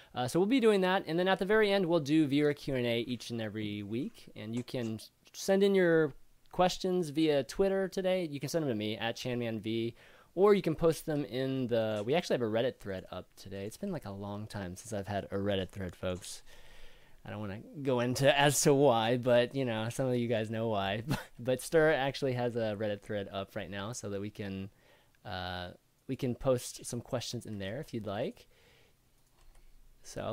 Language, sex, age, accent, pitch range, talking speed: English, male, 20-39, American, 115-160 Hz, 220 wpm